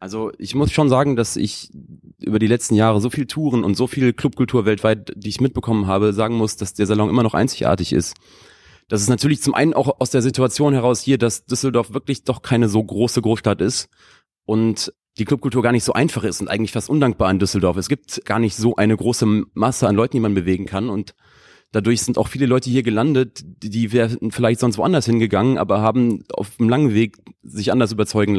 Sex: male